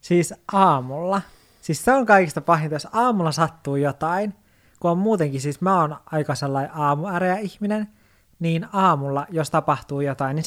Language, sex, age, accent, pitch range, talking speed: Finnish, male, 20-39, native, 145-190 Hz, 150 wpm